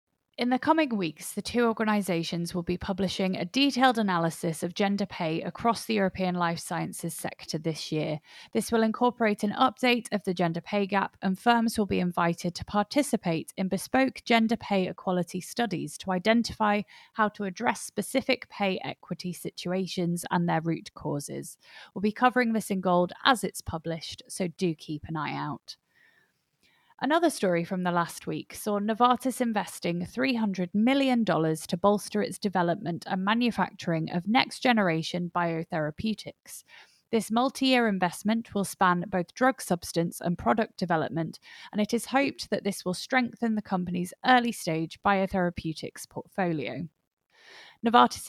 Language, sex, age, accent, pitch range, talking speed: English, female, 30-49, British, 175-220 Hz, 150 wpm